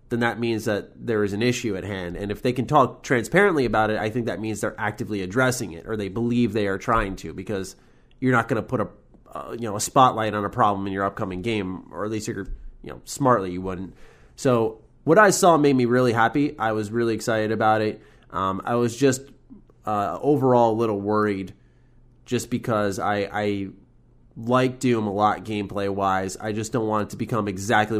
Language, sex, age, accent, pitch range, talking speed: English, male, 30-49, American, 100-120 Hz, 220 wpm